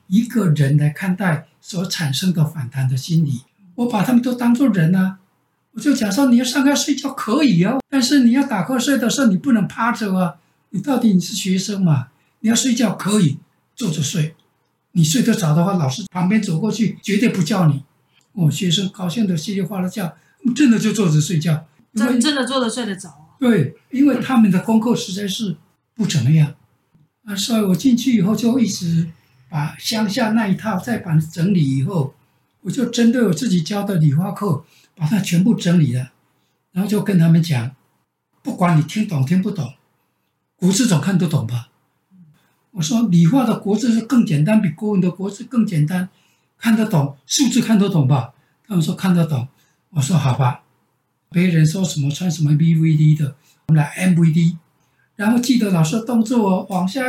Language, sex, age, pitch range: Chinese, male, 60-79, 155-225 Hz